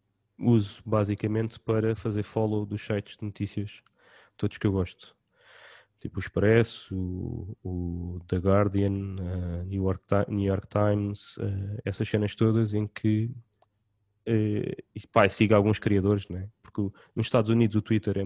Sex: male